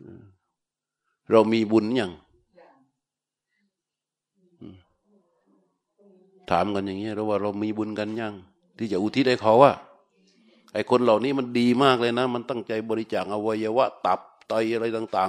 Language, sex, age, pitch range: Thai, male, 60-79, 105-130 Hz